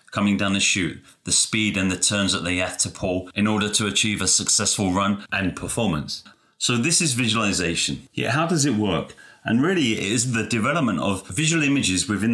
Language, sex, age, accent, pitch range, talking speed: English, male, 30-49, British, 90-110 Hz, 205 wpm